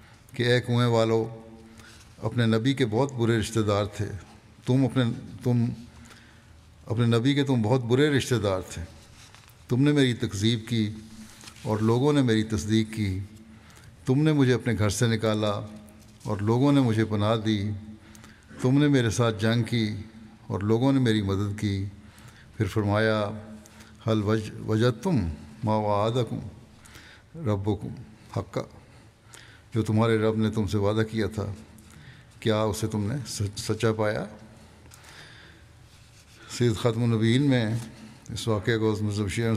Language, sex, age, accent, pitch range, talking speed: English, male, 60-79, Indian, 105-115 Hz, 115 wpm